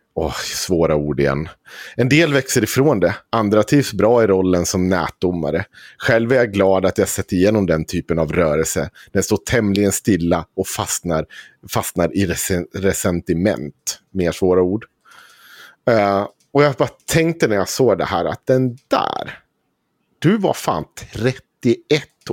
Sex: male